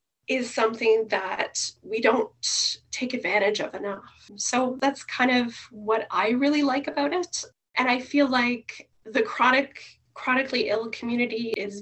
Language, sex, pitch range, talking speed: English, female, 215-265 Hz, 145 wpm